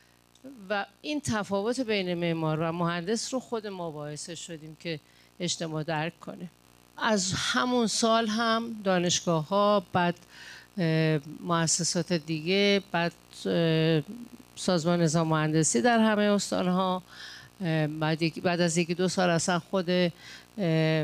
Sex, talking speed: female, 115 wpm